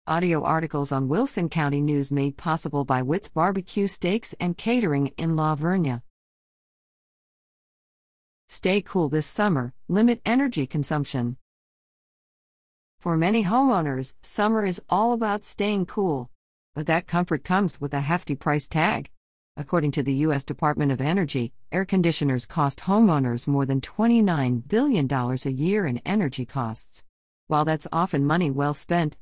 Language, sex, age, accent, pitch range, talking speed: English, female, 50-69, American, 140-180 Hz, 140 wpm